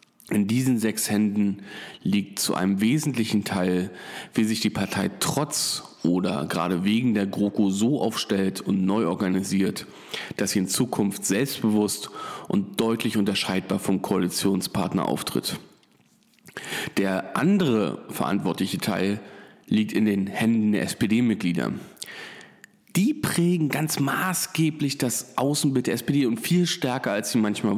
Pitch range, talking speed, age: 105-130 Hz, 125 wpm, 40-59